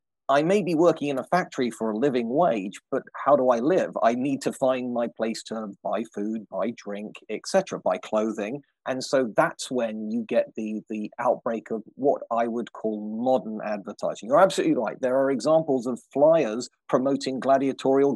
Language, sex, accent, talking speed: English, male, British, 190 wpm